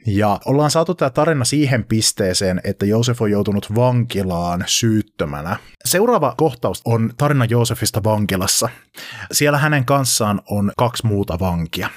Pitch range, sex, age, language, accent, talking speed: 95-125 Hz, male, 30-49, Finnish, native, 125 wpm